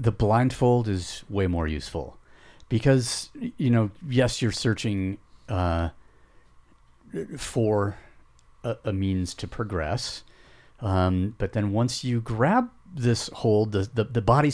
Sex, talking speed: male, 130 wpm